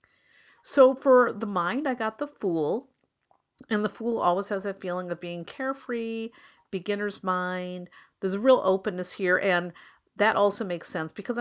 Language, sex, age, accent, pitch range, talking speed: English, female, 50-69, American, 175-225 Hz, 165 wpm